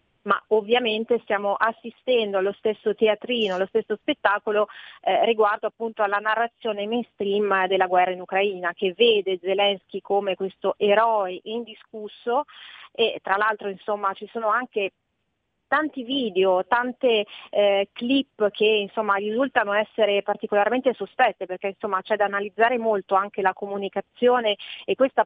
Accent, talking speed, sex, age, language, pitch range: native, 135 wpm, female, 30-49, Italian, 200-230 Hz